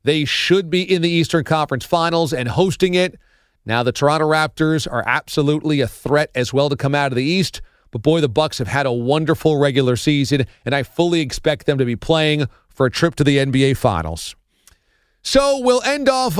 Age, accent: 40-59, American